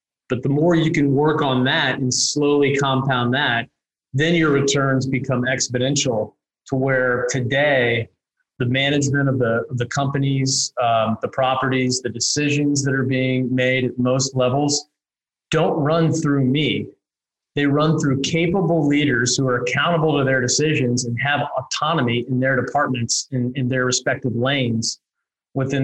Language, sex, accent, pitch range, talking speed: English, male, American, 125-150 Hz, 150 wpm